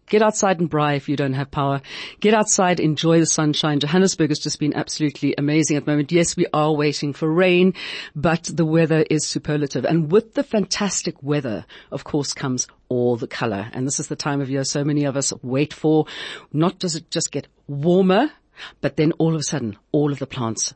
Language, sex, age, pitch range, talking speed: English, female, 50-69, 140-185 Hz, 215 wpm